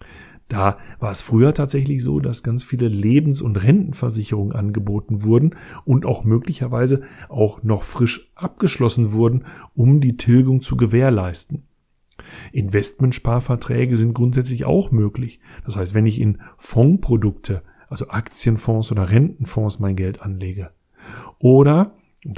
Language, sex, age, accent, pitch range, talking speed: German, male, 40-59, German, 105-135 Hz, 125 wpm